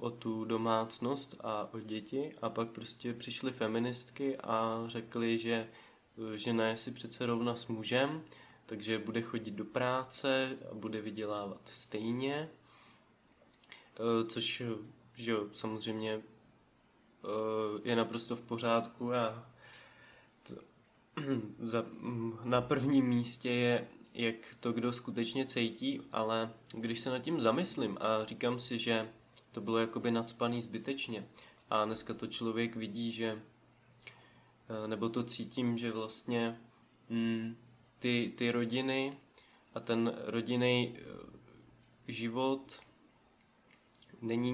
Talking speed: 110 wpm